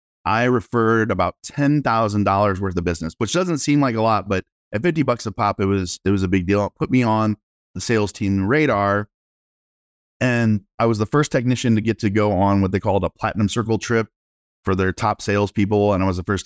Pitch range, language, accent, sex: 100-120 Hz, English, American, male